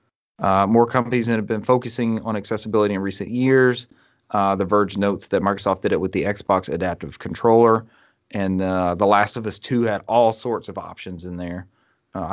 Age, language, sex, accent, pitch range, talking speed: 30-49, English, male, American, 100-115 Hz, 195 wpm